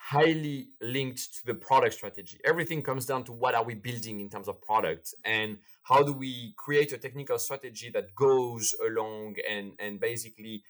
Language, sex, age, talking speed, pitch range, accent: English, male, 30-49, 180 wpm, 115-155 Hz, French